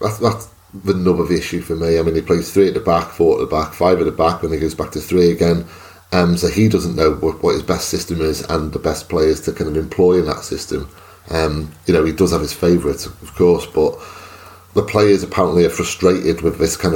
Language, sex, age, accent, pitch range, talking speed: English, male, 30-49, British, 85-95 Hz, 255 wpm